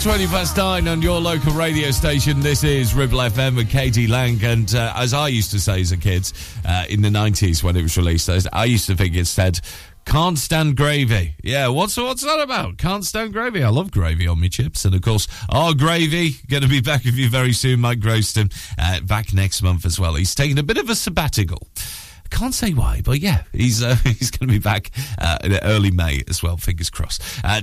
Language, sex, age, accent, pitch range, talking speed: English, male, 40-59, British, 95-130 Hz, 220 wpm